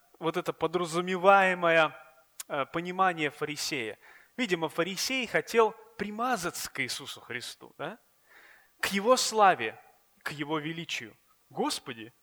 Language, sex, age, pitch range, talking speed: Russian, male, 20-39, 140-200 Hz, 100 wpm